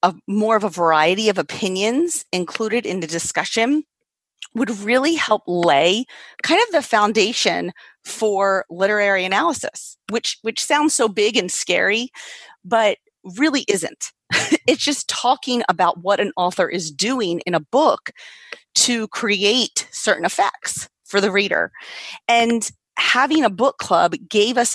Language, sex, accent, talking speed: English, female, American, 140 wpm